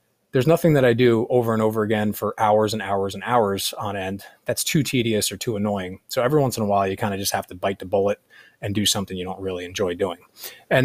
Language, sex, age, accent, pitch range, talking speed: English, male, 20-39, American, 100-120 Hz, 260 wpm